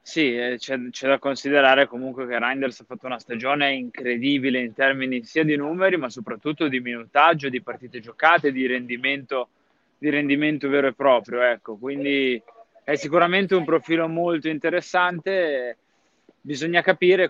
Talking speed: 145 wpm